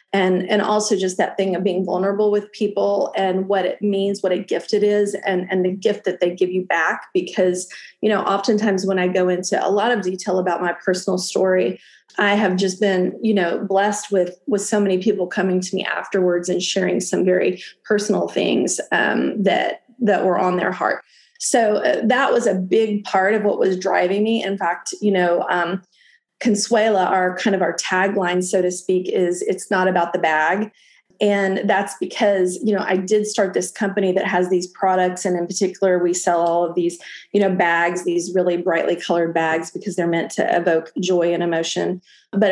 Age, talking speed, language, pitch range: 30-49, 205 wpm, English, 180-205 Hz